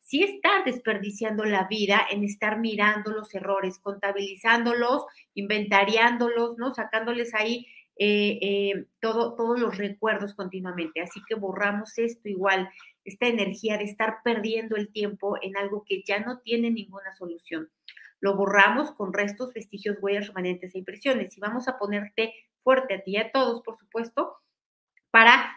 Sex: female